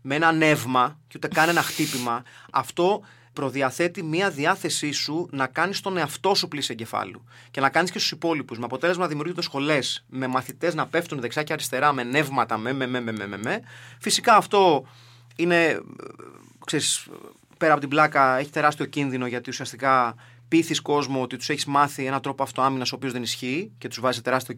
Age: 30-49